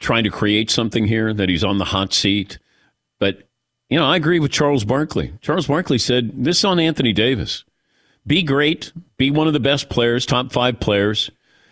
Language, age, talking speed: English, 50-69, 195 wpm